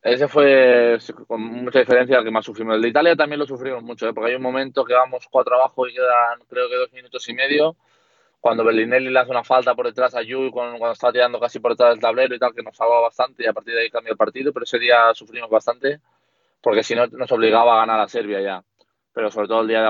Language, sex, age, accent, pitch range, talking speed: Spanish, male, 20-39, Spanish, 105-125 Hz, 260 wpm